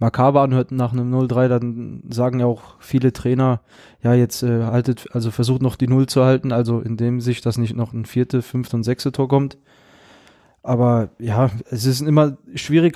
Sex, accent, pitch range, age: male, German, 120-135 Hz, 20-39